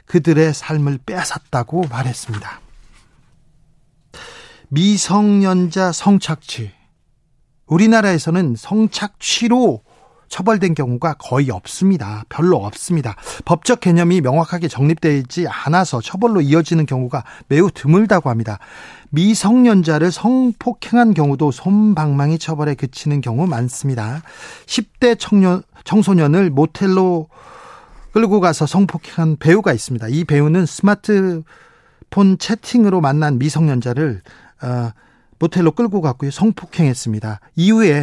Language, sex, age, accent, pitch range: Korean, male, 40-59, native, 140-190 Hz